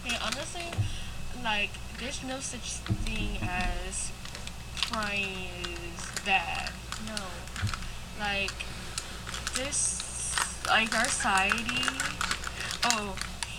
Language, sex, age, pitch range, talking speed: English, female, 10-29, 185-220 Hz, 75 wpm